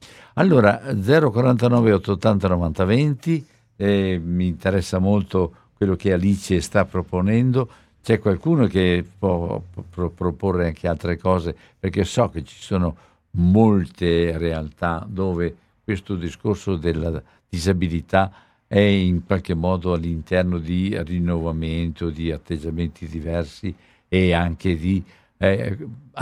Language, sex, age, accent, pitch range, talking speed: Italian, male, 60-79, native, 85-105 Hz, 105 wpm